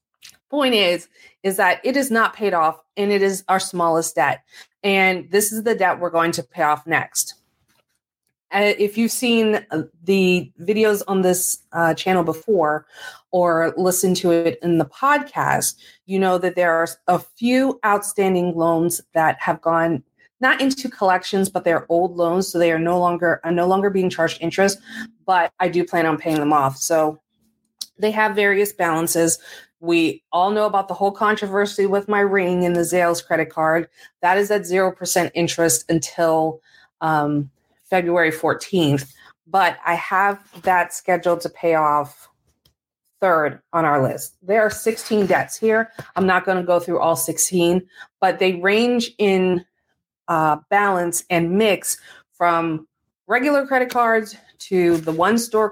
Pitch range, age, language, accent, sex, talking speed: 165-205 Hz, 30-49, English, American, female, 160 wpm